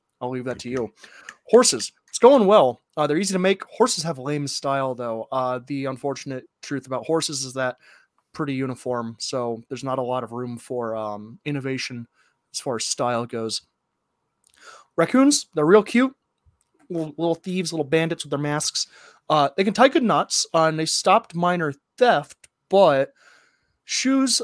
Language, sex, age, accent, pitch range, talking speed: English, male, 20-39, American, 125-165 Hz, 170 wpm